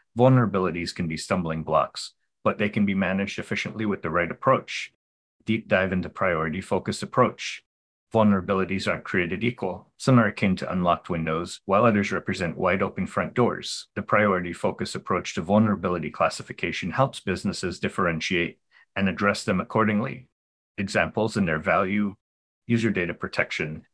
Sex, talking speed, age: male, 145 wpm, 30-49